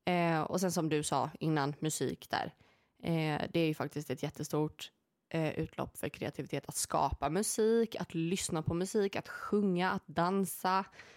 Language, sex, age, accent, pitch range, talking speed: Swedish, female, 20-39, native, 155-185 Hz, 165 wpm